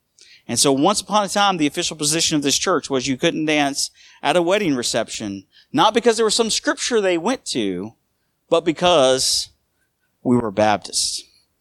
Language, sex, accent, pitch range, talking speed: English, male, American, 125-170 Hz, 175 wpm